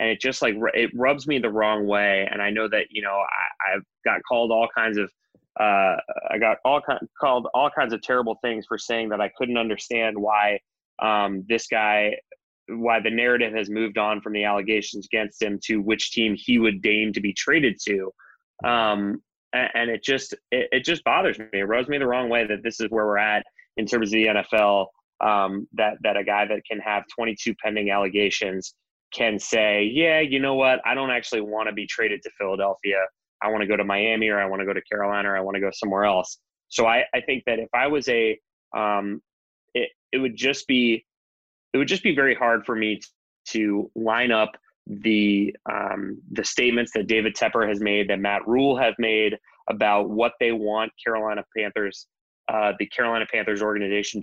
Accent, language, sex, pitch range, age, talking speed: American, English, male, 105-115 Hz, 20-39, 210 wpm